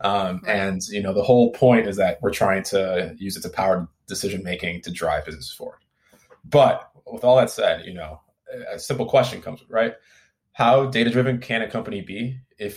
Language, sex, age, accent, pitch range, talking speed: English, male, 20-39, American, 90-125 Hz, 190 wpm